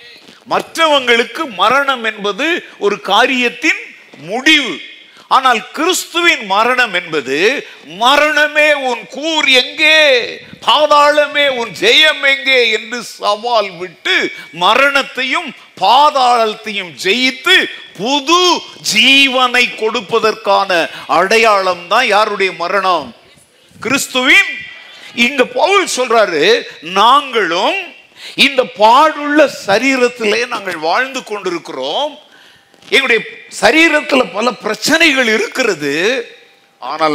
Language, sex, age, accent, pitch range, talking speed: Tamil, male, 50-69, native, 205-295 Hz, 60 wpm